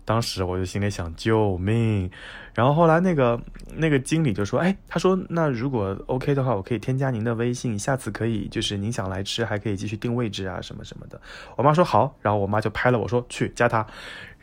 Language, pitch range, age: Chinese, 100-125 Hz, 20-39